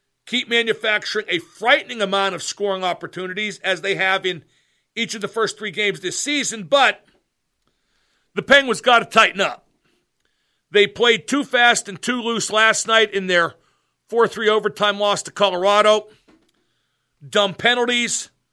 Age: 50-69